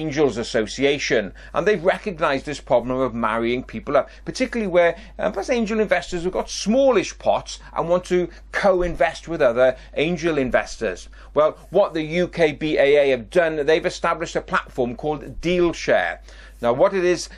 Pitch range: 130-180 Hz